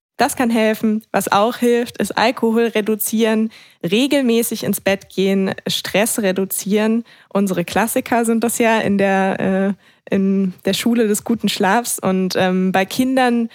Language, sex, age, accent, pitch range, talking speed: German, female, 20-39, German, 185-215 Hz, 145 wpm